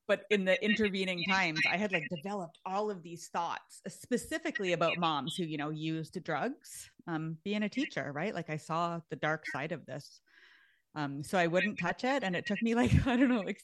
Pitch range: 165-220 Hz